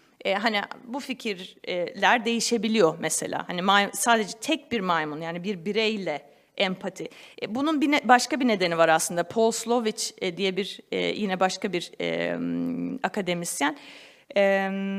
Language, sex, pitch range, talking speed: Turkish, female, 185-245 Hz, 115 wpm